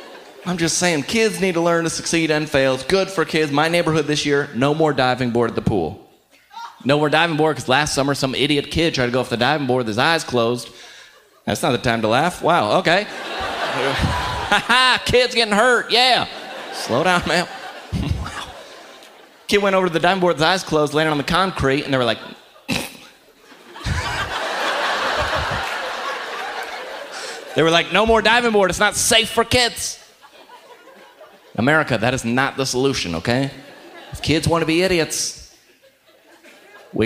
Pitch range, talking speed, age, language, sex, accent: 140-205 Hz, 180 wpm, 30-49, English, male, American